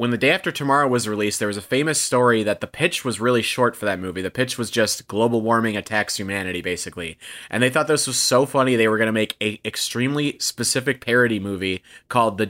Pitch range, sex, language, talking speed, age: 100-125 Hz, male, English, 235 wpm, 30-49